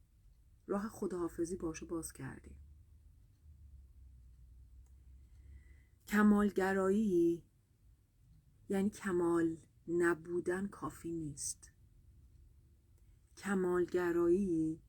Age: 30-49